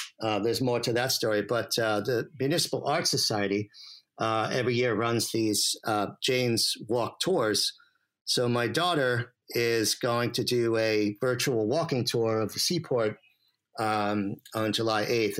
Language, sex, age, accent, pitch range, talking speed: English, male, 50-69, American, 105-125 Hz, 150 wpm